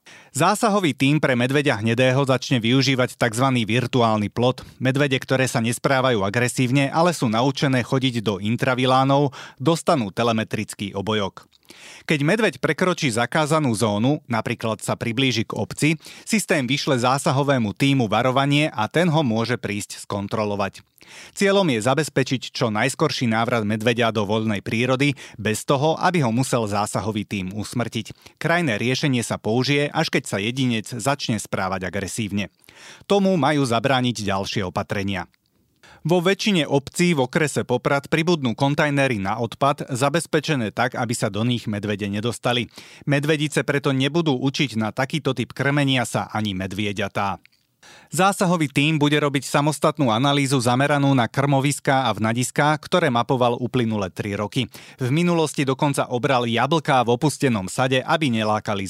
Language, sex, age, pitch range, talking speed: Slovak, male, 30-49, 115-145 Hz, 135 wpm